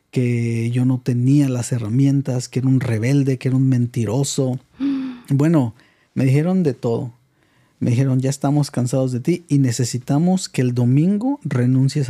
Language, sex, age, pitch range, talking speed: Spanish, male, 40-59, 130-150 Hz, 160 wpm